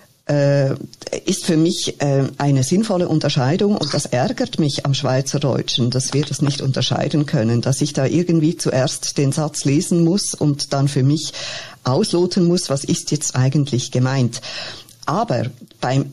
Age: 50-69